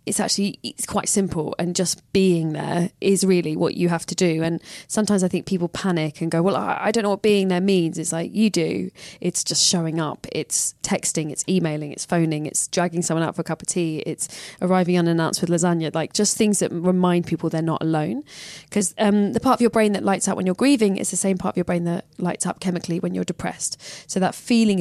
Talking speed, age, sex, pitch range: 240 wpm, 20-39, female, 160-190 Hz